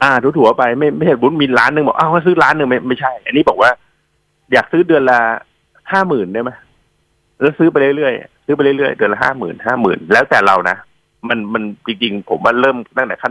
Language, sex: Thai, male